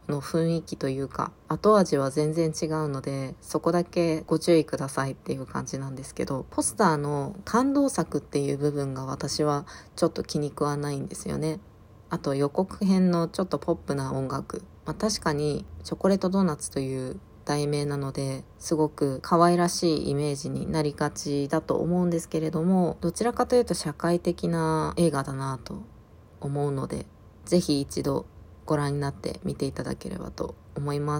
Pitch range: 140-170 Hz